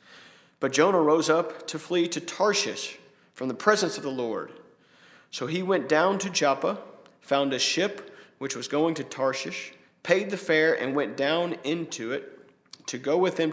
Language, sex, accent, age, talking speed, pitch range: English, male, American, 40-59, 175 wpm, 135-190 Hz